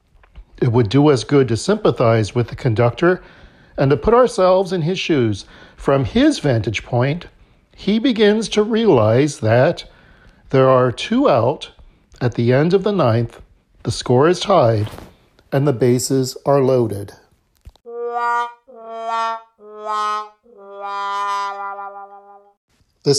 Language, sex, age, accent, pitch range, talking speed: English, male, 40-59, American, 125-205 Hz, 120 wpm